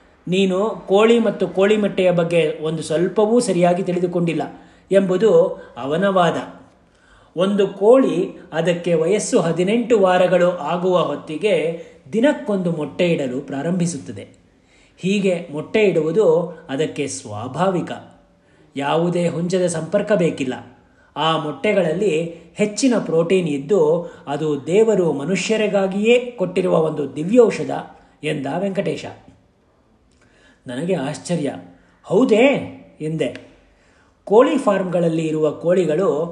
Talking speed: 90 wpm